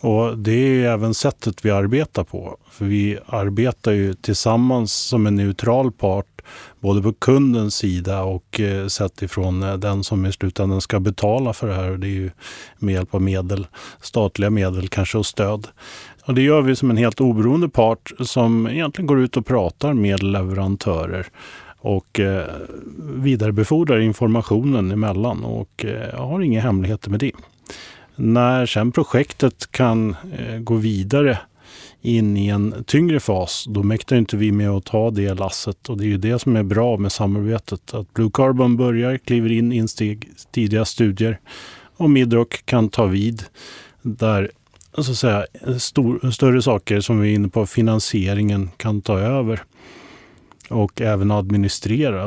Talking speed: 155 wpm